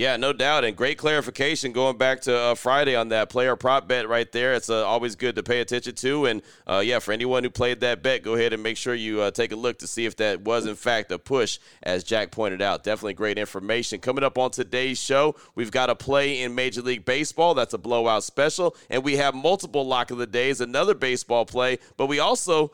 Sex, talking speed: male, 245 wpm